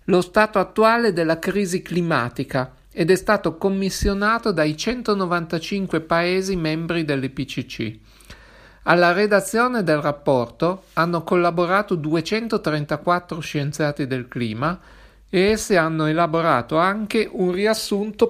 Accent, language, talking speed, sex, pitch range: native, Italian, 105 wpm, male, 155-205 Hz